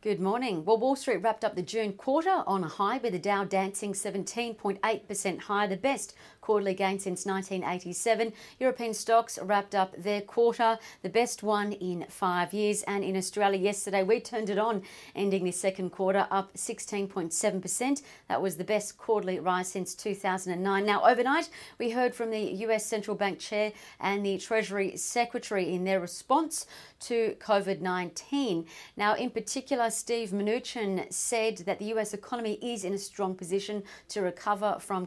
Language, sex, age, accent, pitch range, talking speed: English, female, 40-59, Australian, 190-225 Hz, 165 wpm